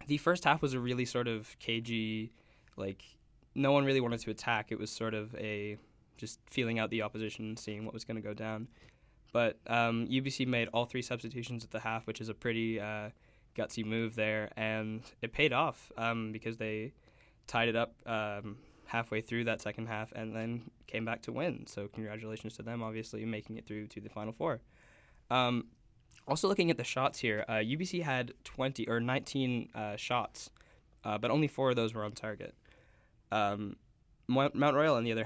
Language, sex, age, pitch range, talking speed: English, male, 10-29, 110-125 Hz, 195 wpm